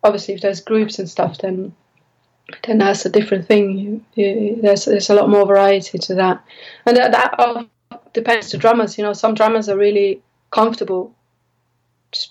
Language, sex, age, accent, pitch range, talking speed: English, female, 20-39, British, 200-230 Hz, 175 wpm